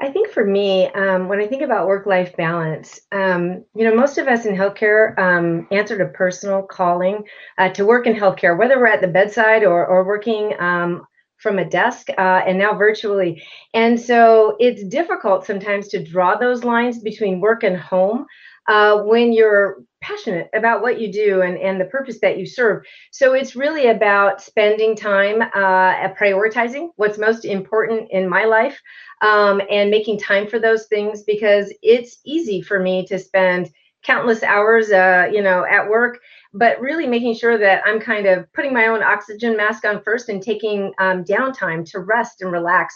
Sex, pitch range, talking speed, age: female, 190-225 Hz, 185 wpm, 30-49